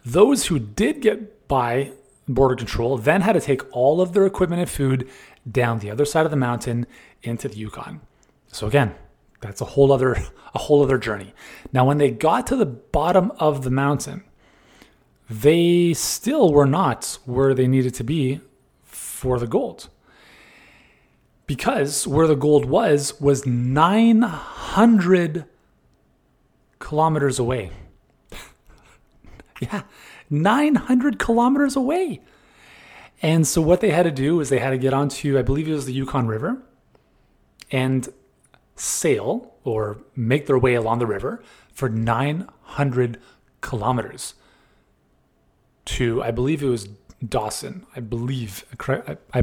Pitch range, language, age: 125-160 Hz, English, 30-49